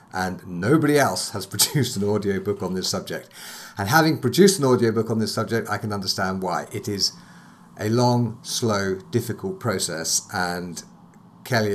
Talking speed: 160 wpm